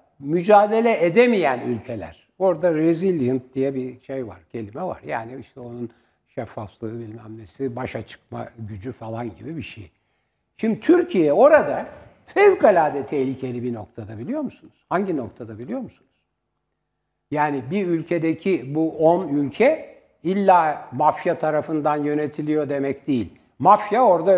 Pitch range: 125-165 Hz